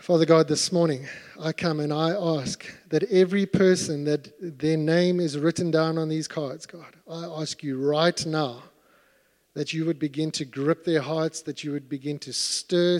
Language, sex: English, male